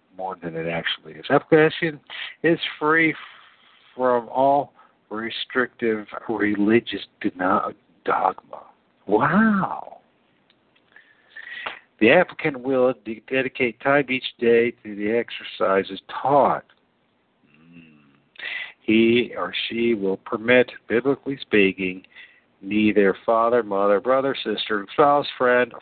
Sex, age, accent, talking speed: male, 60-79, American, 90 wpm